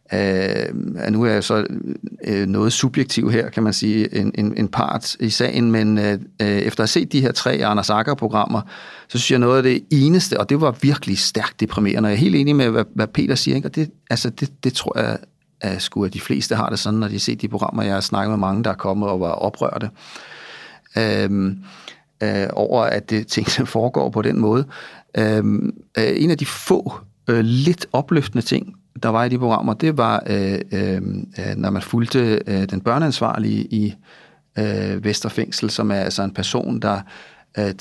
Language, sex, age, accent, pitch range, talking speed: Danish, male, 40-59, native, 100-115 Hz, 205 wpm